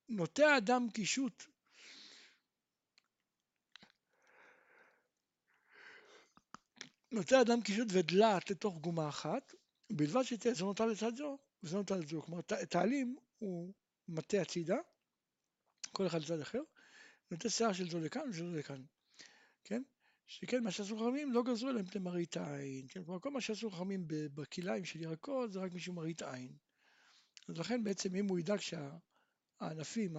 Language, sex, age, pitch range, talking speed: Hebrew, male, 60-79, 170-235 Hz, 140 wpm